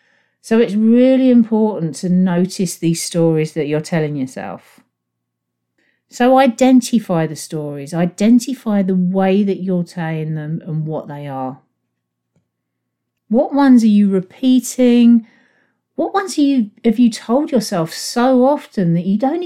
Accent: British